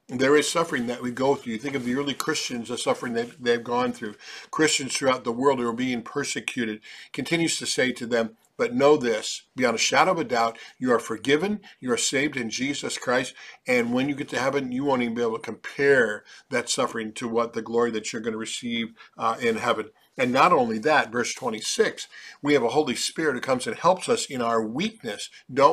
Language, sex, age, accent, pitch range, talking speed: English, male, 50-69, American, 115-150 Hz, 235 wpm